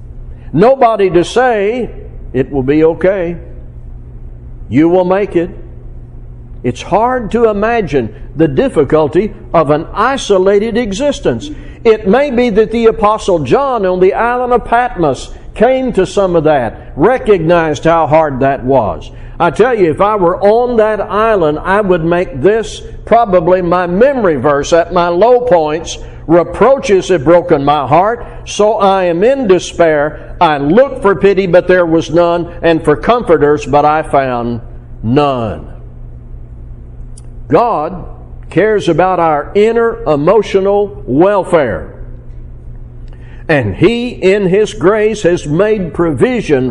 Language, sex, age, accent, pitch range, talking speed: English, male, 60-79, American, 135-205 Hz, 135 wpm